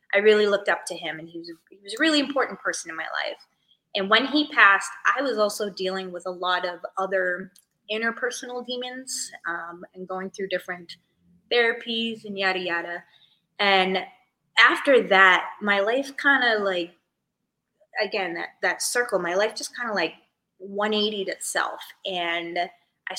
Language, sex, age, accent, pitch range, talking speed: English, female, 20-39, American, 180-235 Hz, 170 wpm